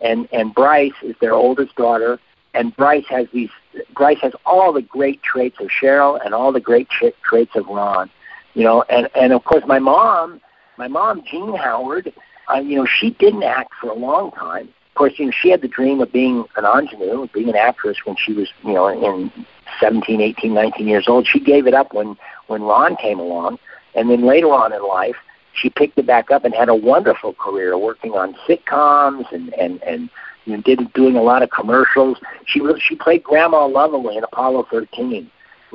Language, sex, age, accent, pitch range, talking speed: English, male, 60-79, American, 115-145 Hz, 210 wpm